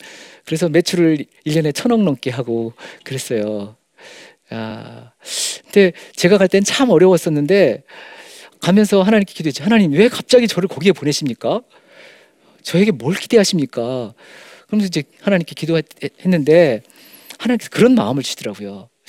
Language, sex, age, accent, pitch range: Korean, male, 40-59, native, 150-220 Hz